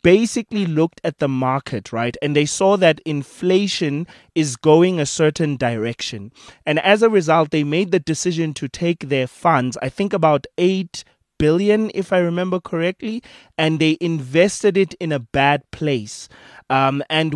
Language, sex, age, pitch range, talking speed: English, male, 20-39, 140-175 Hz, 165 wpm